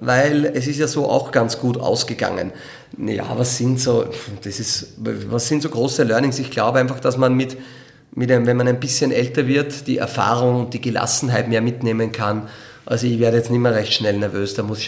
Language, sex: German, male